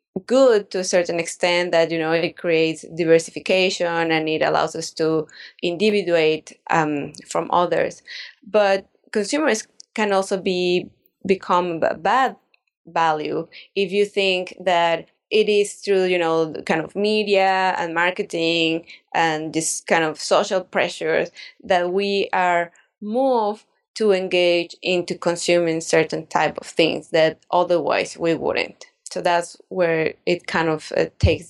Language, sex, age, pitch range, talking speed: English, female, 20-39, 165-200 Hz, 140 wpm